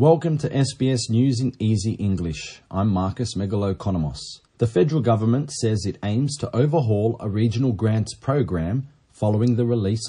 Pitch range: 100-130 Hz